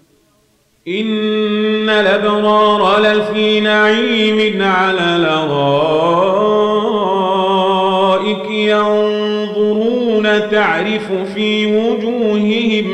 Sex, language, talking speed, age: male, Arabic, 45 wpm, 40-59